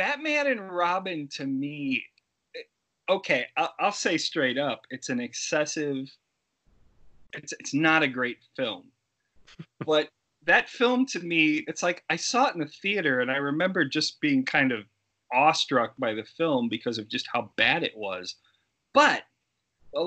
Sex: male